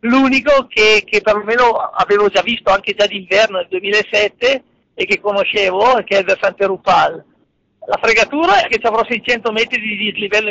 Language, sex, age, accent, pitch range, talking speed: Italian, male, 50-69, native, 200-235 Hz, 170 wpm